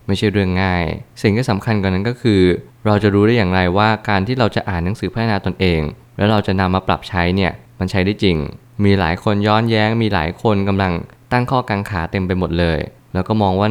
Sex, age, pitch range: male, 20-39, 95-110 Hz